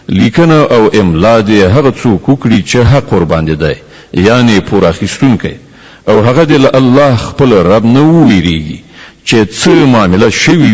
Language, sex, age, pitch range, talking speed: Arabic, male, 60-79, 100-130 Hz, 140 wpm